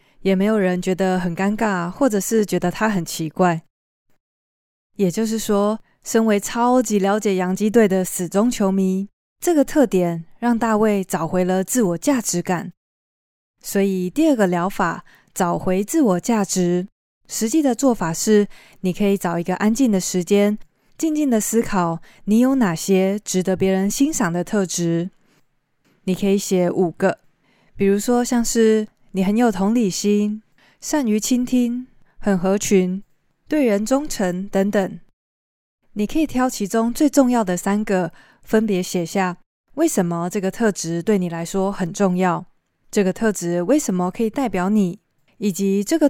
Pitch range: 180-225 Hz